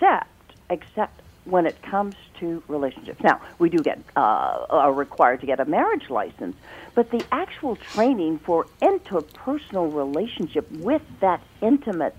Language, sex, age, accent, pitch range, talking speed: English, female, 50-69, American, 180-235 Hz, 145 wpm